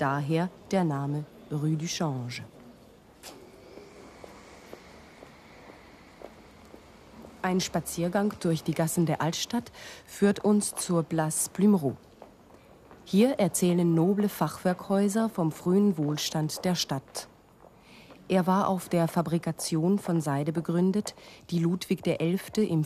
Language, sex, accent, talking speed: German, female, German, 100 wpm